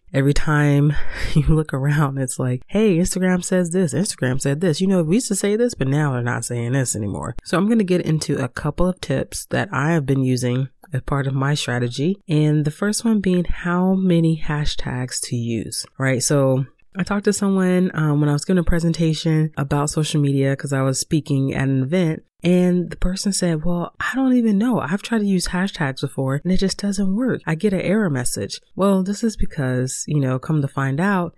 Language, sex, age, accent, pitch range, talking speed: English, female, 30-49, American, 135-180 Hz, 220 wpm